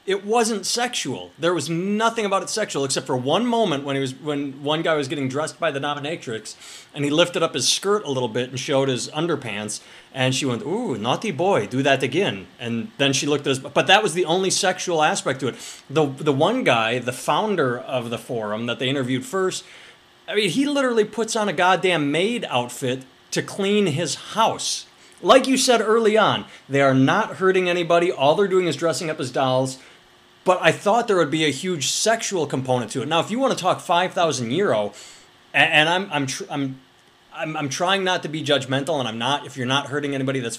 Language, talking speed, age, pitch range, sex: English, 220 wpm, 30-49, 130-170 Hz, male